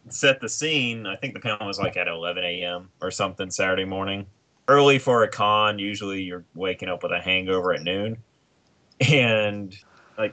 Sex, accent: male, American